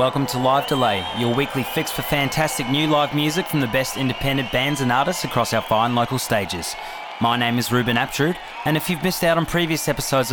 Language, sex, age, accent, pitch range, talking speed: English, male, 20-39, Australian, 120-150 Hz, 215 wpm